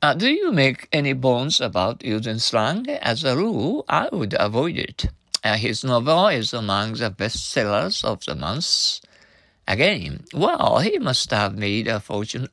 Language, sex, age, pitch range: Japanese, male, 60-79, 105-160 Hz